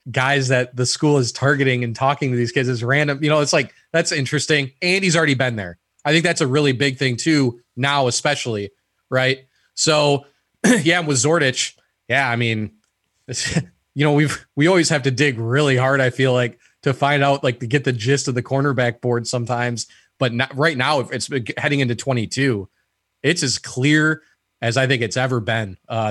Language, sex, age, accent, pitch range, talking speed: English, male, 20-39, American, 115-140 Hz, 200 wpm